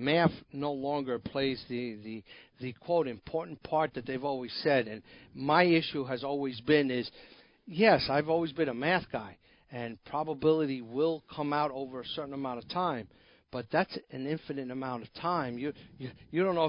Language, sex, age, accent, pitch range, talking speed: English, male, 50-69, American, 135-165 Hz, 185 wpm